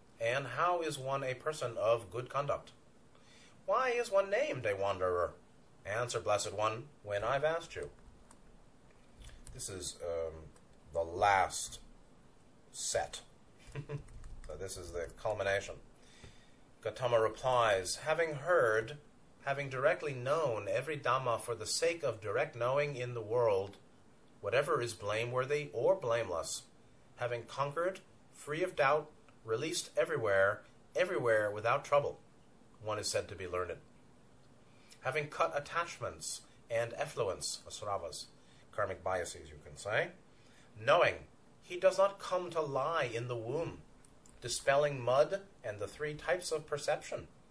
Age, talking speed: 30-49, 125 wpm